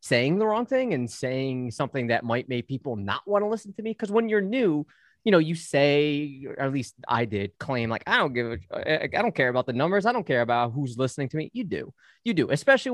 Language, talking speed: English, 255 wpm